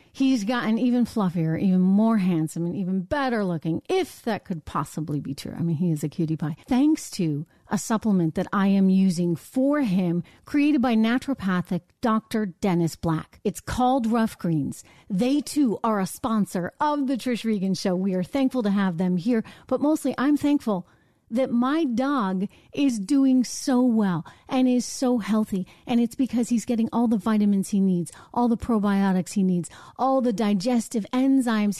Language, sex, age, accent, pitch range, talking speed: English, female, 40-59, American, 190-255 Hz, 180 wpm